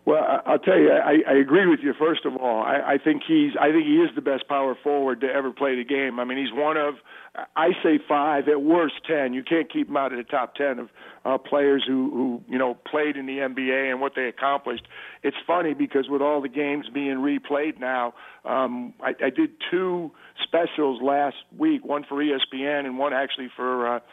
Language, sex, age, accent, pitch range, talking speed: English, male, 50-69, American, 130-150 Hz, 225 wpm